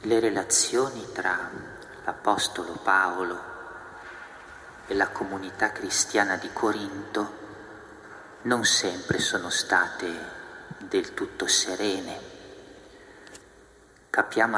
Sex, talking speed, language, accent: male, 80 wpm, Italian, native